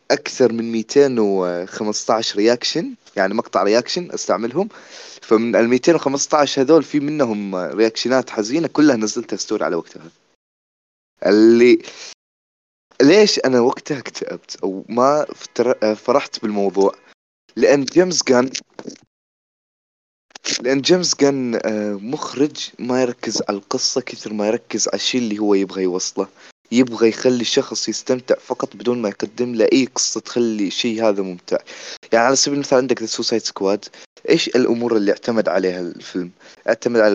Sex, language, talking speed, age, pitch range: male, Arabic, 130 wpm, 20-39, 105-135 Hz